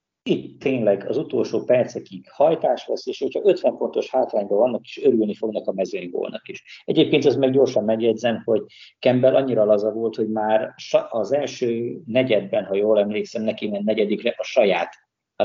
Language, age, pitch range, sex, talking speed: Hungarian, 50-69, 105-135 Hz, male, 175 wpm